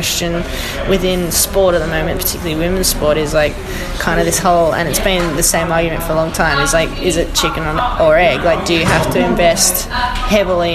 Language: English